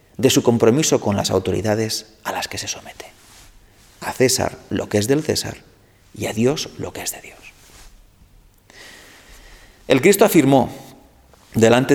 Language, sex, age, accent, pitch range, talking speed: Spanish, male, 40-59, Spanish, 100-130 Hz, 150 wpm